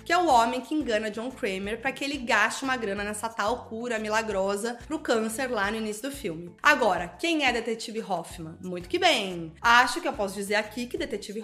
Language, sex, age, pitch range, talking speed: Portuguese, female, 20-39, 210-295 Hz, 215 wpm